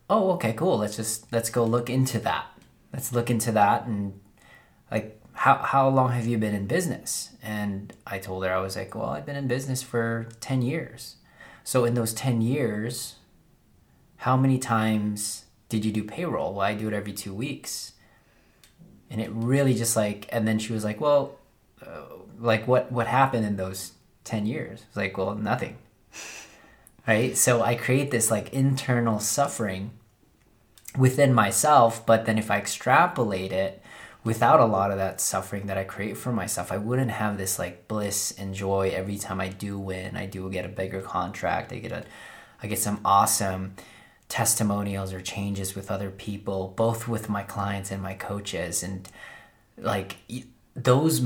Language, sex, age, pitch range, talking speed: English, male, 20-39, 100-120 Hz, 180 wpm